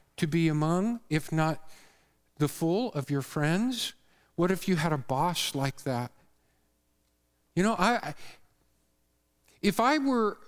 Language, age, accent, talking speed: English, 50-69, American, 145 wpm